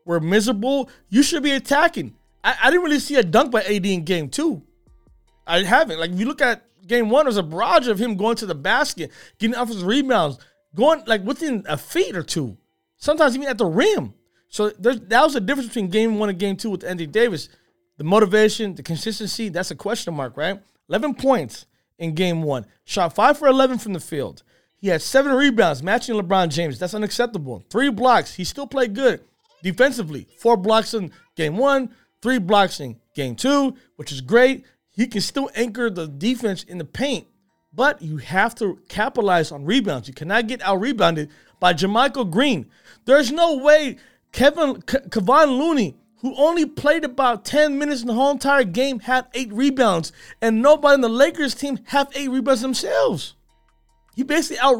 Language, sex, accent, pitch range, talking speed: English, male, American, 185-270 Hz, 190 wpm